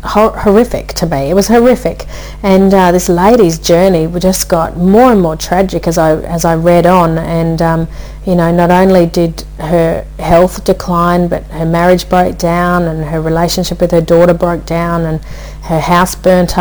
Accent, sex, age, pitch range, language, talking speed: Australian, female, 40-59, 170-190 Hz, English, 180 wpm